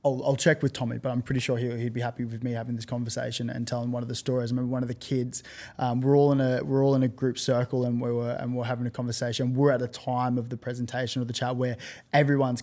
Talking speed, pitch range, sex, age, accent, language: 295 wpm, 120-135 Hz, male, 20-39, Australian, English